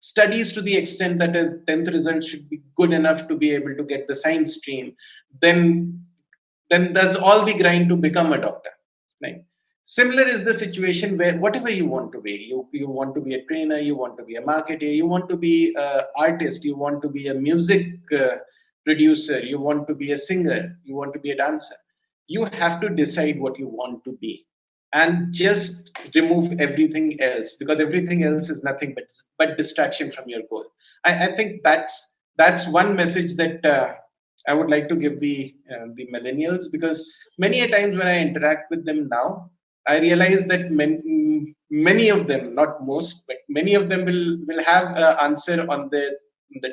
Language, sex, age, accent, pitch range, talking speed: English, male, 30-49, Indian, 150-185 Hz, 195 wpm